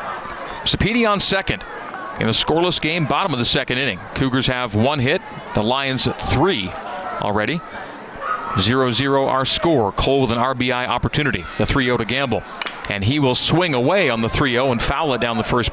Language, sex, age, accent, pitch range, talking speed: English, male, 40-59, American, 115-140 Hz, 185 wpm